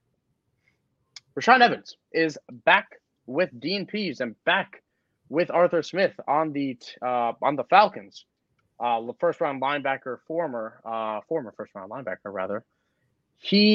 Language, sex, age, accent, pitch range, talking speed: English, male, 20-39, American, 120-160 Hz, 125 wpm